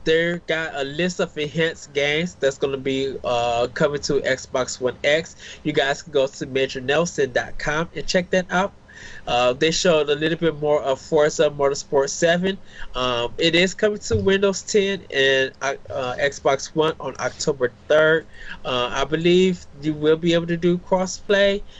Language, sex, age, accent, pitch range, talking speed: English, male, 20-39, American, 135-175 Hz, 170 wpm